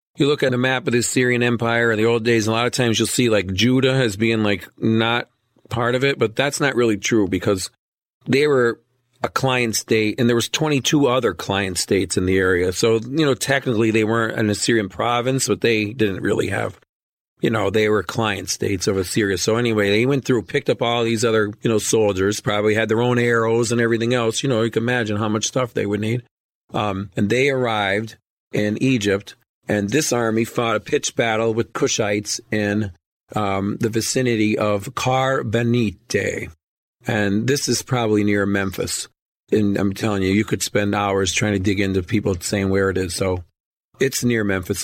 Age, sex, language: 40-59, male, English